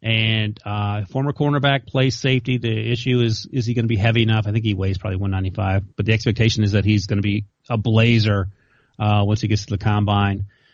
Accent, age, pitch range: American, 30-49, 105-120 Hz